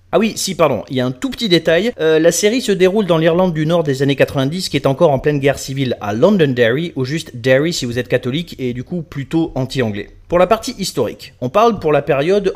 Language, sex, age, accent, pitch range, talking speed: French, male, 30-49, French, 120-170 Hz, 255 wpm